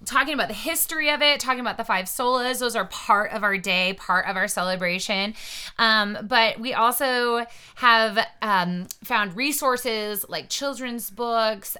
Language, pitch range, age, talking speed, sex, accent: English, 185-235 Hz, 20-39, 165 wpm, female, American